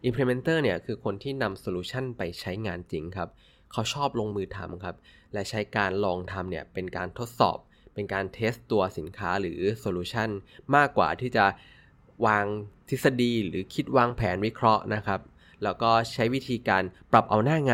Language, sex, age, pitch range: Thai, male, 20-39, 95-115 Hz